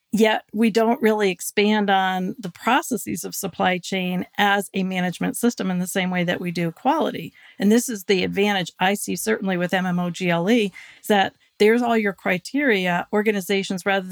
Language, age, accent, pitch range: English, 40-59, American, 180-210 Hz